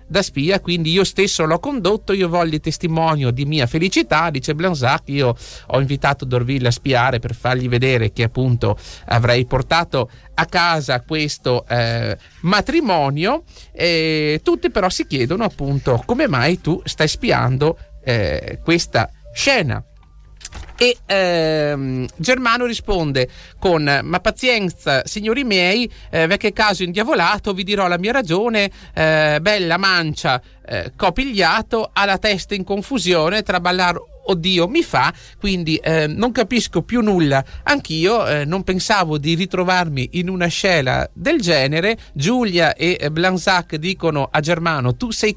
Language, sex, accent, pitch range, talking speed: Italian, male, native, 130-195 Hz, 140 wpm